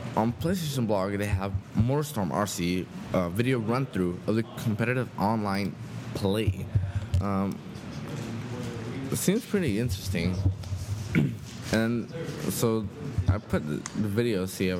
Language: English